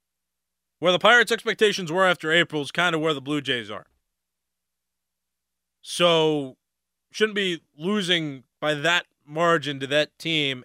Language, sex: English, male